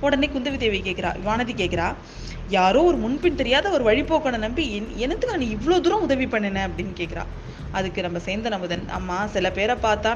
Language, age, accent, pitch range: Tamil, 20-39, native, 195-275 Hz